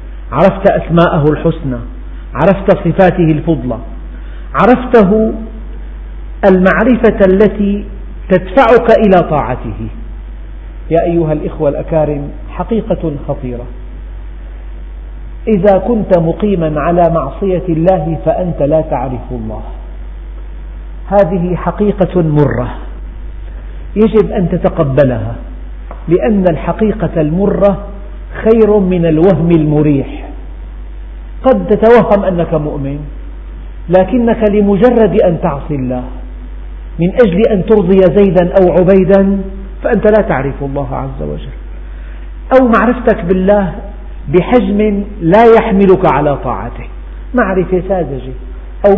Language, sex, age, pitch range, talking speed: Arabic, male, 50-69, 135-200 Hz, 90 wpm